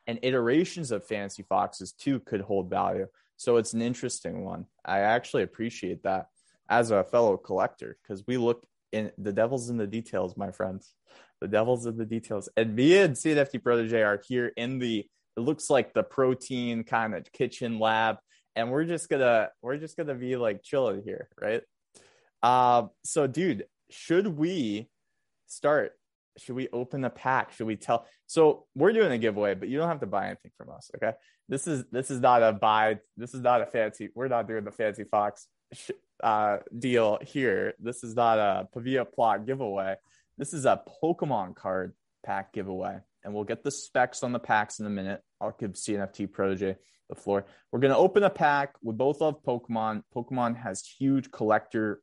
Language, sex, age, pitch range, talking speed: English, male, 20-39, 105-130 Hz, 190 wpm